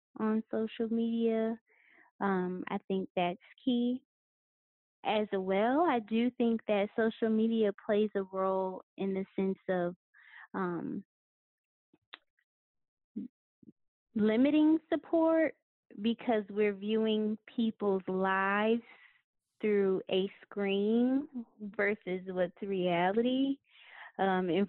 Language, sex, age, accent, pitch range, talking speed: English, female, 20-39, American, 185-225 Hz, 95 wpm